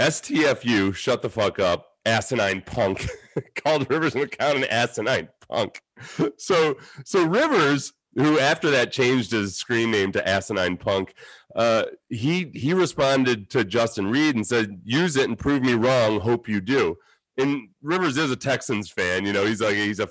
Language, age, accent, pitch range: English, 30-49, American, 105-130 Hz